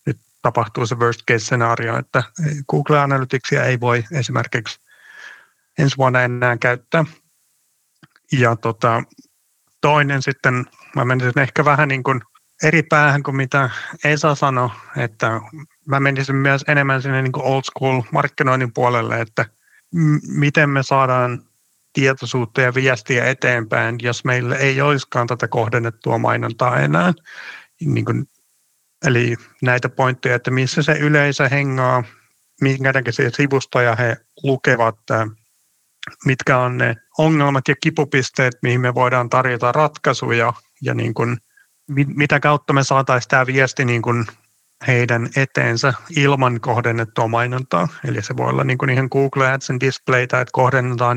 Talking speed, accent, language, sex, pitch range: 130 wpm, native, Finnish, male, 120-140 Hz